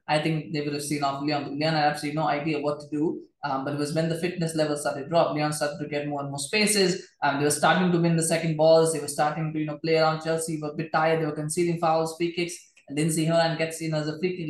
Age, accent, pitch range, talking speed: 20-39, Indian, 155-190 Hz, 305 wpm